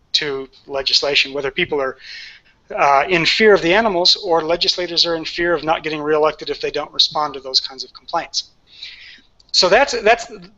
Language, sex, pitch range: English, male, 150-185 Hz